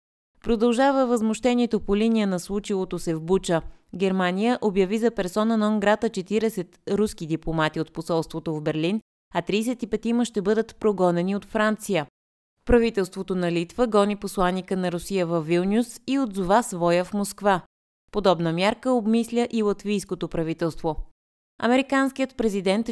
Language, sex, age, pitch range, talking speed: Bulgarian, female, 20-39, 175-220 Hz, 135 wpm